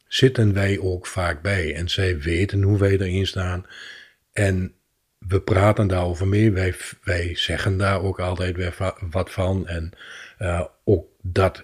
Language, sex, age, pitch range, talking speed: Dutch, male, 50-69, 90-105 Hz, 160 wpm